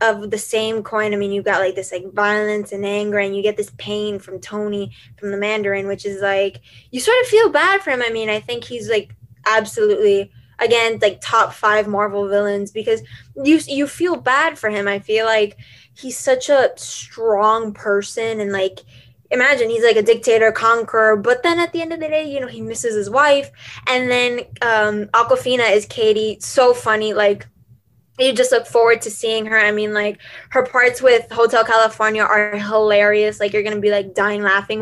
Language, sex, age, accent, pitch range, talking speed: English, female, 10-29, American, 205-250 Hz, 205 wpm